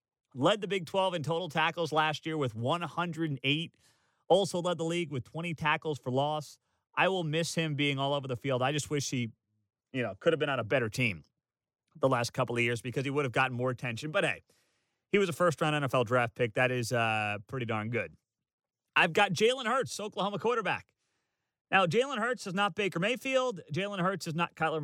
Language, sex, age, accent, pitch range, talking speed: English, male, 30-49, American, 130-180 Hz, 210 wpm